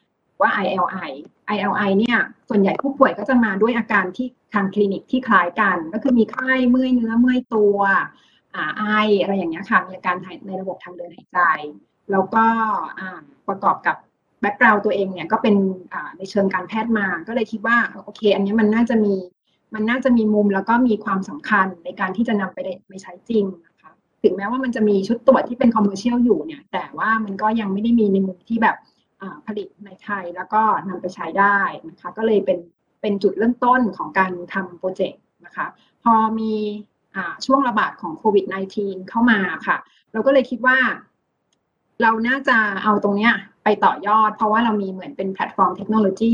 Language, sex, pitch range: Thai, female, 190-225 Hz